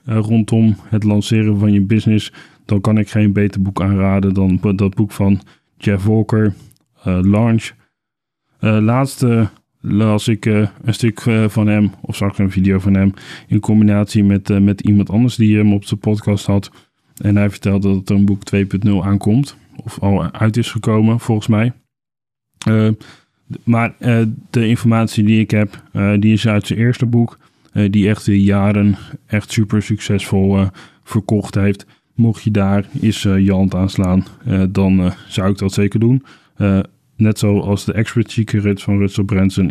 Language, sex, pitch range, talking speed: Dutch, male, 100-110 Hz, 185 wpm